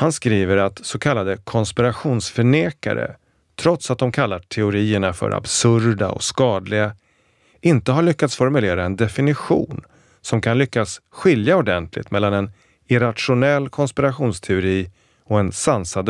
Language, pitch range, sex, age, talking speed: Swedish, 90-125 Hz, male, 30-49, 125 wpm